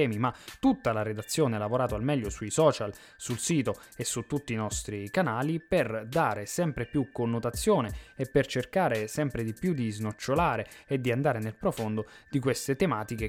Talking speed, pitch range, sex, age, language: 175 wpm, 110-150 Hz, male, 20-39, Italian